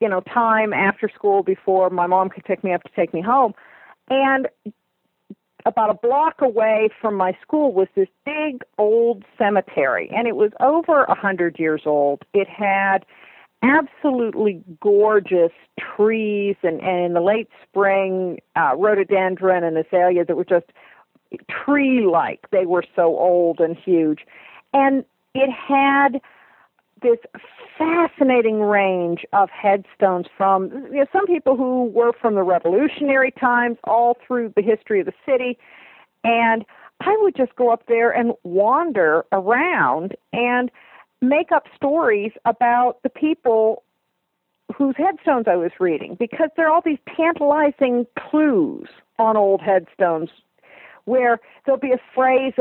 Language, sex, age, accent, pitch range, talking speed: English, female, 50-69, American, 195-270 Hz, 140 wpm